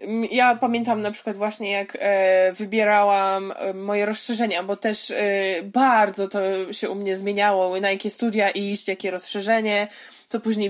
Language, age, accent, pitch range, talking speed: Polish, 20-39, native, 195-235 Hz, 155 wpm